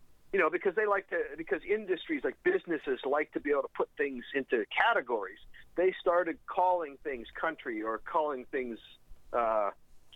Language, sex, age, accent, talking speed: English, male, 50-69, American, 165 wpm